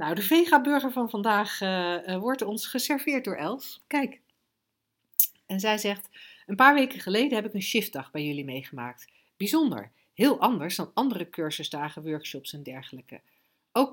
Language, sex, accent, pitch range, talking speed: Dutch, female, Dutch, 165-230 Hz, 160 wpm